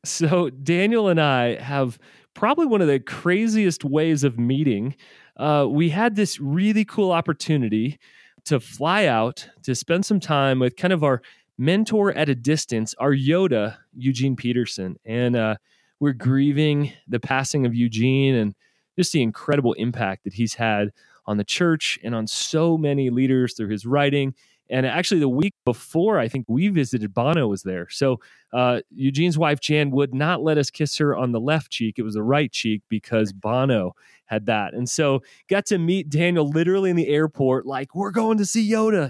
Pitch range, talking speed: 125-165 Hz, 180 wpm